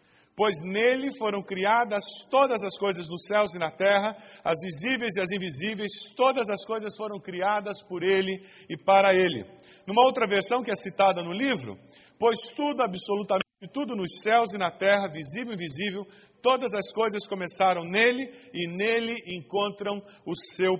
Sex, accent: male, Brazilian